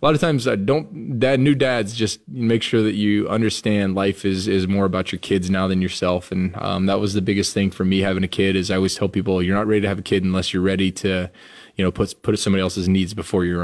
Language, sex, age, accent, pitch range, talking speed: English, male, 20-39, American, 95-105 Hz, 275 wpm